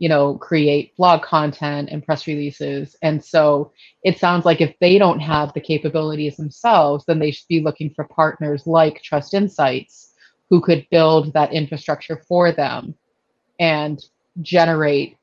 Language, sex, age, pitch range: English, female, 30-49, 150-170 Hz